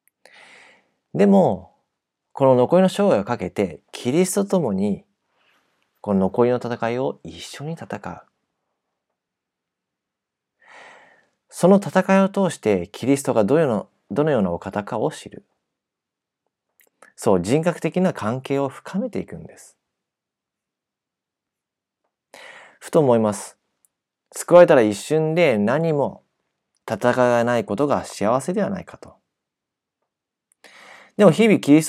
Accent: native